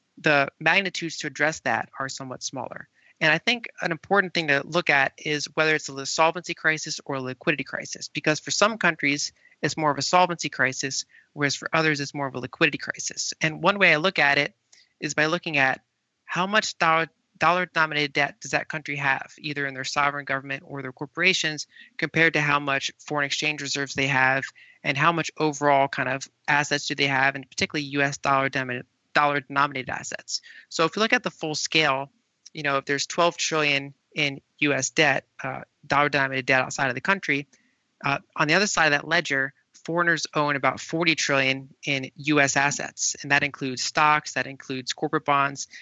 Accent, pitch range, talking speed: American, 140-160 Hz, 195 wpm